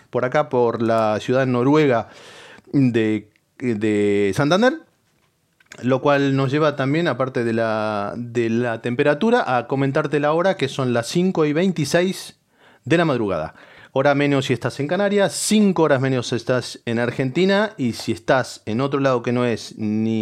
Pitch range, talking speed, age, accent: 120-155 Hz, 165 wpm, 30-49, Argentinian